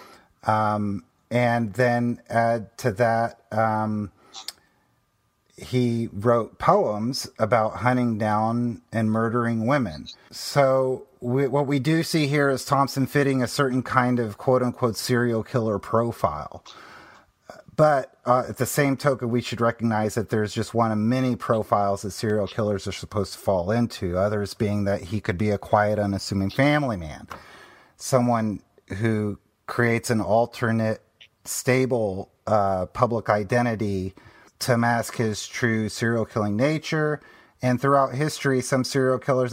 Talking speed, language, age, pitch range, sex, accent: 135 wpm, English, 30-49, 105-130 Hz, male, American